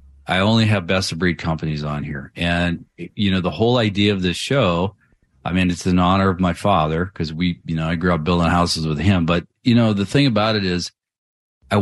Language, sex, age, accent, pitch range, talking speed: English, male, 40-59, American, 85-110 Hz, 235 wpm